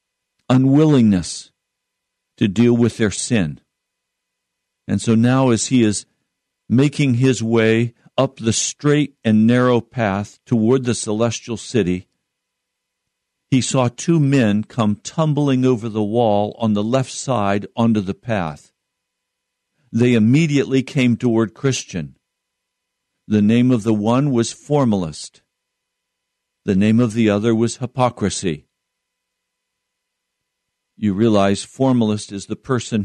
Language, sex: English, male